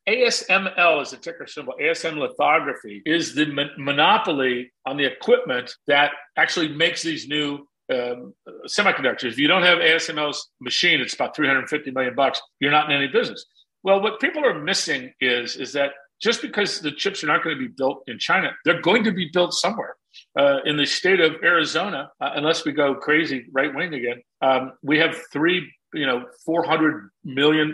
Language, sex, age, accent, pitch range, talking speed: English, male, 50-69, American, 130-170 Hz, 185 wpm